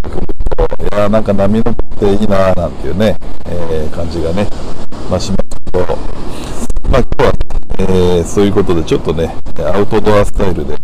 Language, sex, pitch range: Japanese, male, 95-120 Hz